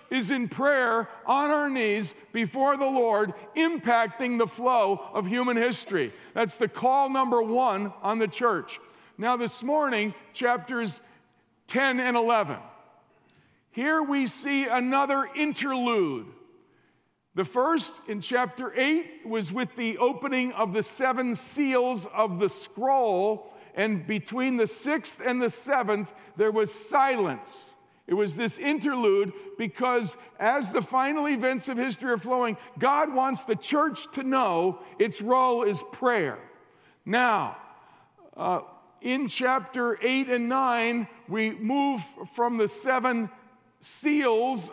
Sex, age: male, 50-69